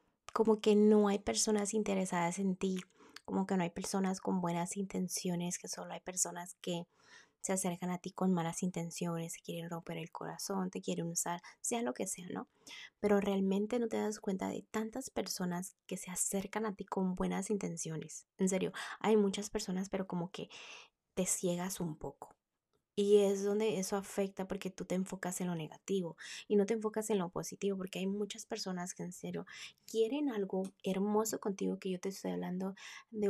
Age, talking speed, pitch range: 20-39, 190 wpm, 180-210 Hz